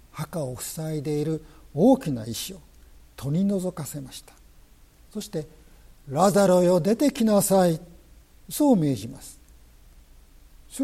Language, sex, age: Japanese, male, 60-79